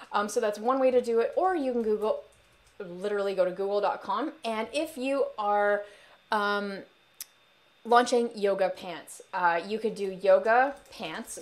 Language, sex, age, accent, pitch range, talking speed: English, female, 20-39, American, 190-235 Hz, 160 wpm